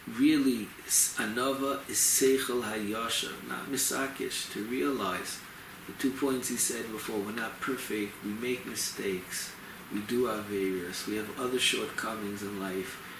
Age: 30-49